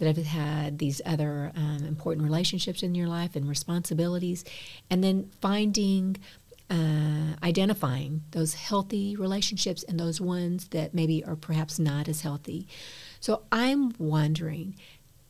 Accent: American